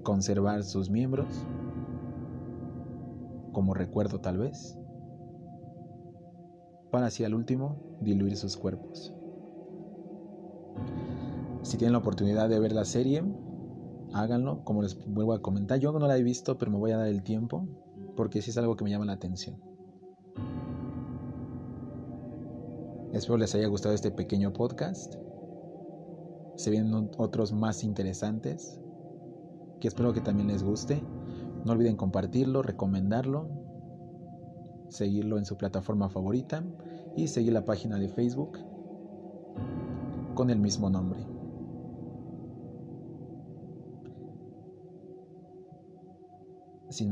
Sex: male